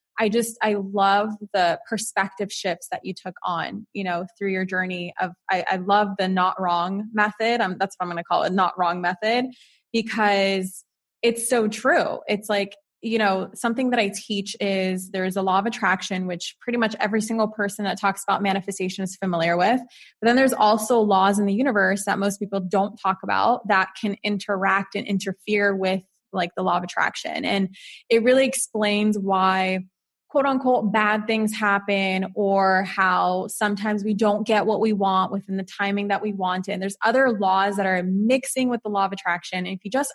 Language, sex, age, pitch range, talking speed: English, female, 20-39, 190-220 Hz, 200 wpm